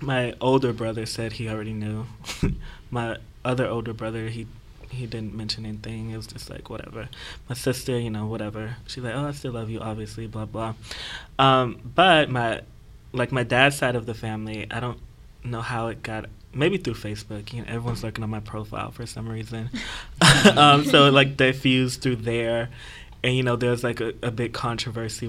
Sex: male